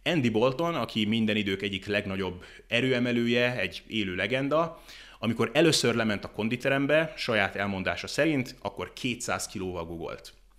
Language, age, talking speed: Hungarian, 30-49, 130 wpm